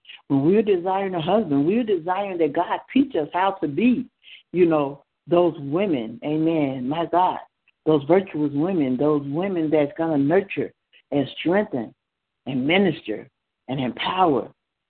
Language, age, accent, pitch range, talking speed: English, 60-79, American, 155-205 Hz, 145 wpm